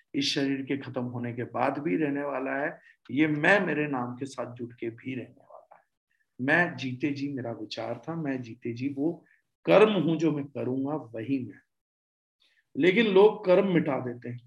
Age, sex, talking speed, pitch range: 50-69, male, 190 wpm, 135-190 Hz